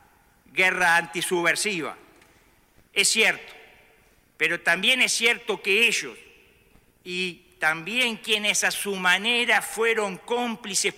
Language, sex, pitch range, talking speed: Spanish, male, 180-220 Hz, 100 wpm